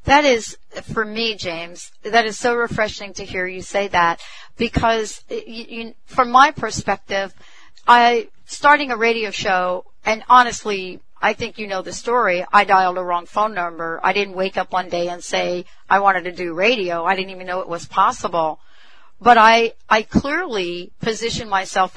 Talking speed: 170 wpm